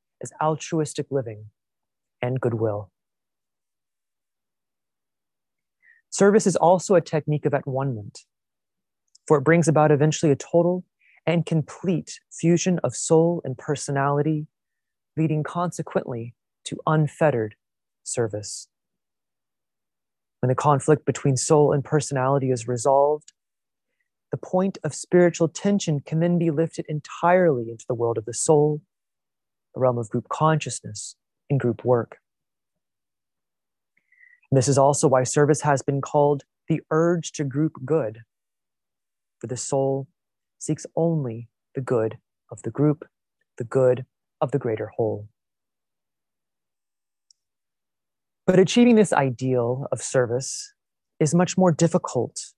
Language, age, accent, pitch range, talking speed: English, 30-49, American, 125-160 Hz, 120 wpm